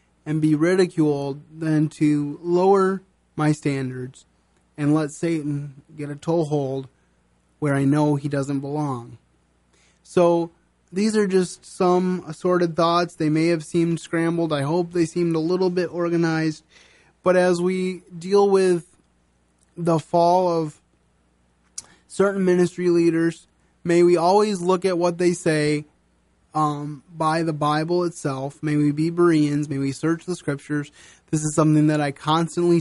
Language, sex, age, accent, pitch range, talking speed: English, male, 20-39, American, 145-175 Hz, 145 wpm